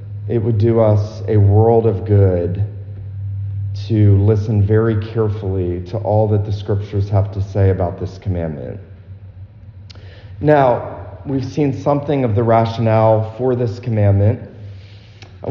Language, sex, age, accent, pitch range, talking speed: English, male, 40-59, American, 100-125 Hz, 130 wpm